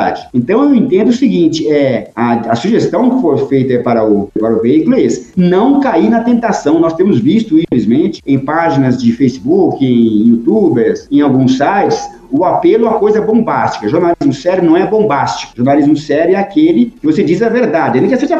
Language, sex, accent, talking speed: Portuguese, male, Brazilian, 185 wpm